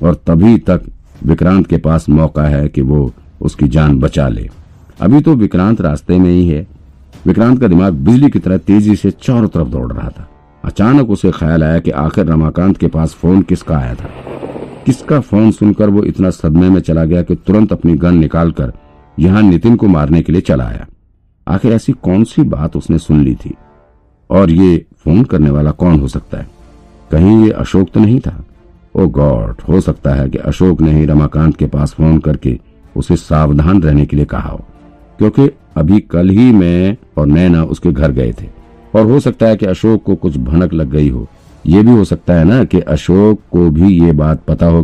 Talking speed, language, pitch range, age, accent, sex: 200 wpm, Hindi, 75-95 Hz, 50-69, native, male